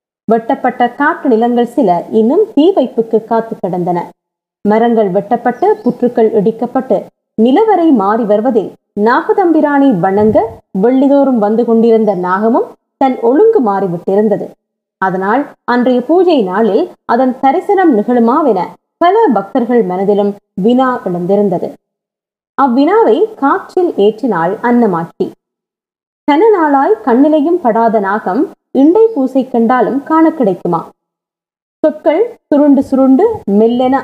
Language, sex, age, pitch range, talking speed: Tamil, female, 20-39, 210-290 Hz, 85 wpm